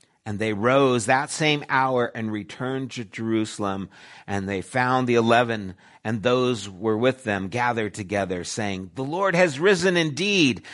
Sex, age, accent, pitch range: male, 50-69, American, 130-180 Hz